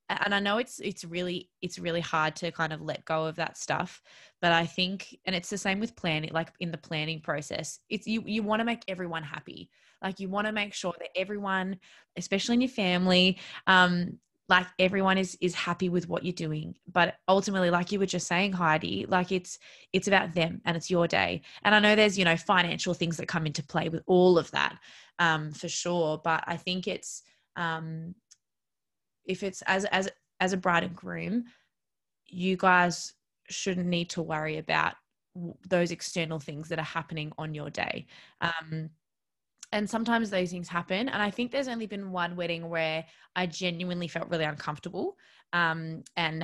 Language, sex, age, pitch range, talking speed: English, female, 20-39, 165-190 Hz, 195 wpm